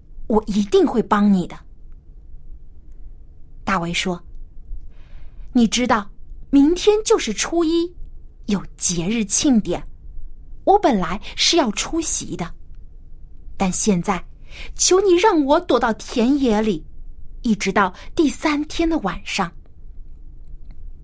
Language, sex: Chinese, female